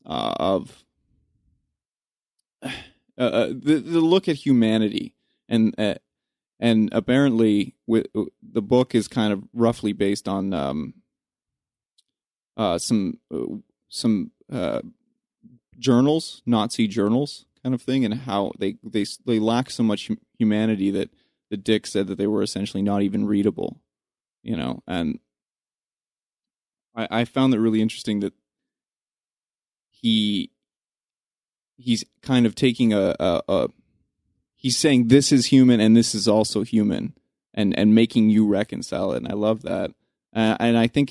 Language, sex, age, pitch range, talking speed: English, male, 20-39, 105-125 Hz, 140 wpm